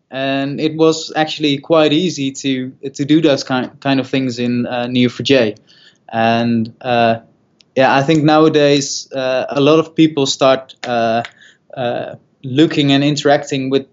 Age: 20-39